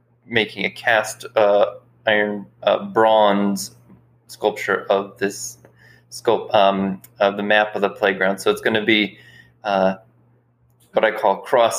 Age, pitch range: 20-39, 100-115 Hz